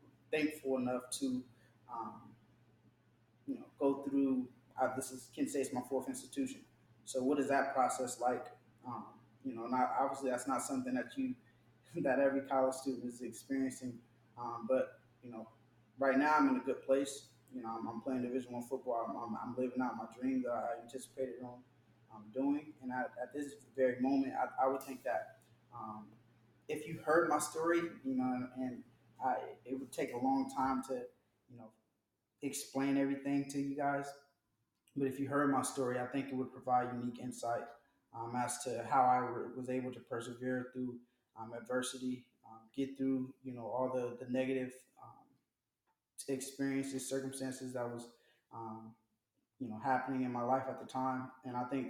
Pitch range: 120-135 Hz